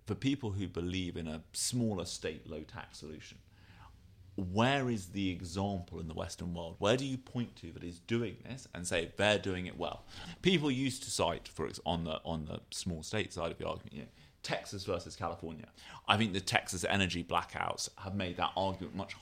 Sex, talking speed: male, 205 wpm